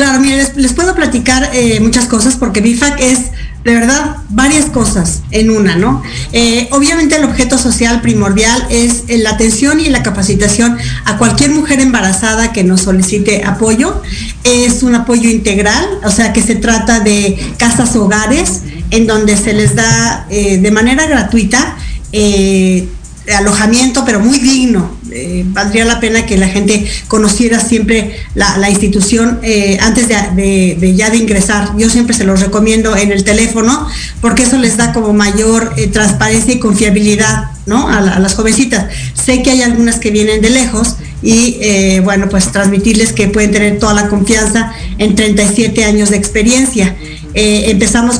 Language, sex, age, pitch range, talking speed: Spanish, female, 50-69, 205-235 Hz, 170 wpm